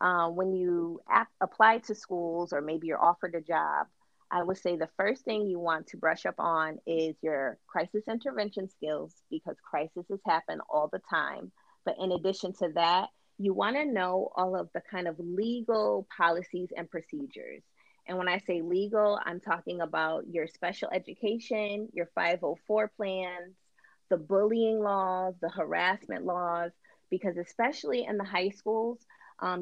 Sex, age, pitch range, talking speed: female, 30-49, 170-210 Hz, 165 wpm